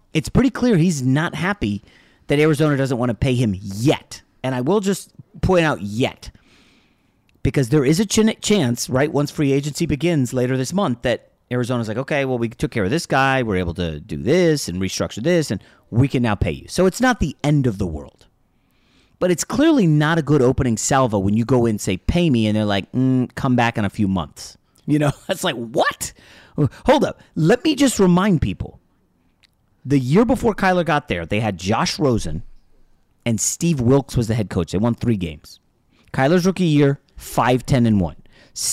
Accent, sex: American, male